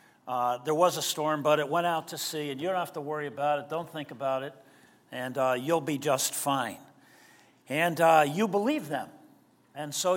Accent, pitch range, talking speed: American, 135-175 Hz, 210 wpm